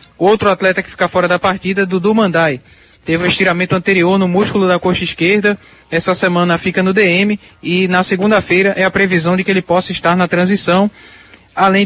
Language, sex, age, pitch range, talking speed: Portuguese, male, 20-39, 165-195 Hz, 185 wpm